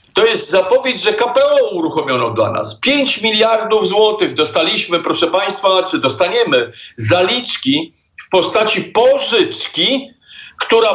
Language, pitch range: Polish, 185-275 Hz